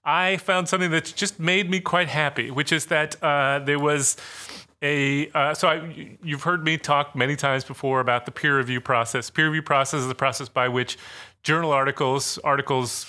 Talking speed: 195 wpm